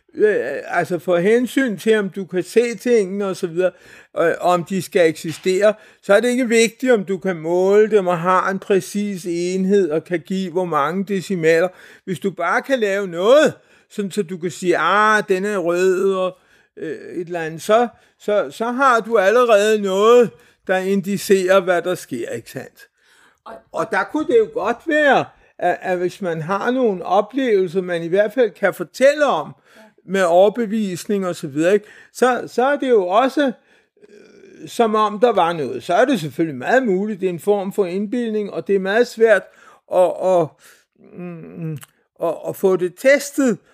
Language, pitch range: Danish, 185-235 Hz